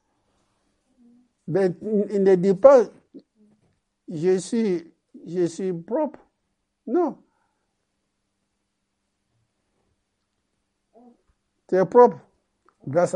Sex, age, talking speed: male, 60-79, 80 wpm